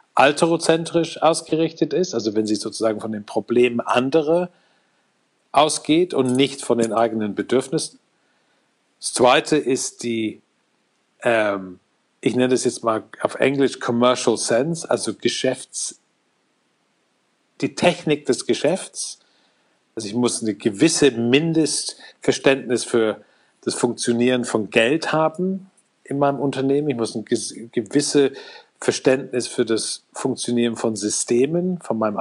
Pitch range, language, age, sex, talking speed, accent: 115-150 Hz, German, 50-69, male, 120 wpm, German